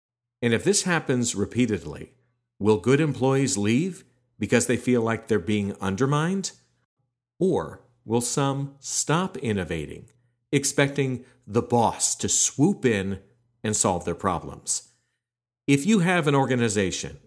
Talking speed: 125 wpm